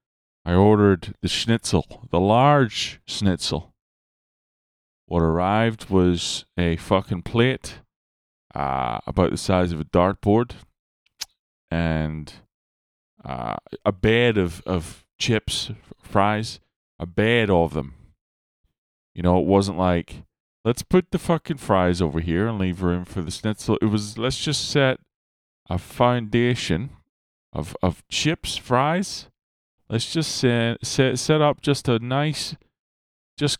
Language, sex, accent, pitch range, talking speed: English, male, American, 85-125 Hz, 125 wpm